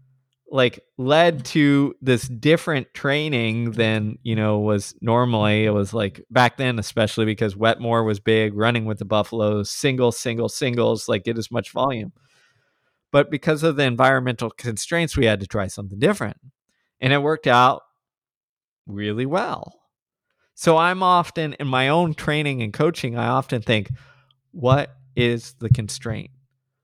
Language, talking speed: English, 150 wpm